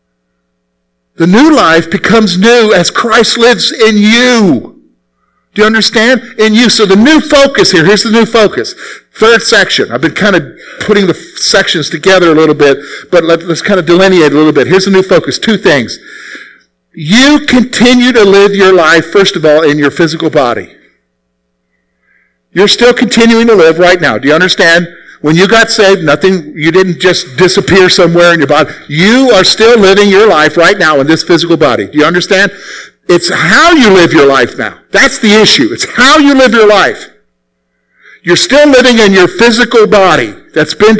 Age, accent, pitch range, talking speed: 50-69, American, 150-220 Hz, 185 wpm